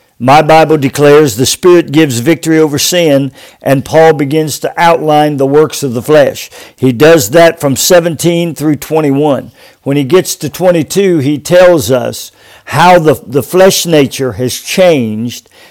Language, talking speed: English, 155 wpm